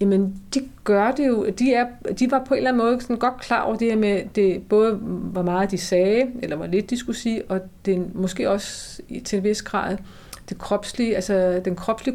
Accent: native